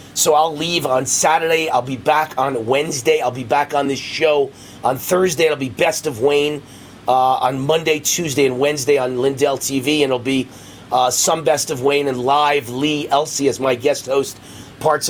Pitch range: 140-185 Hz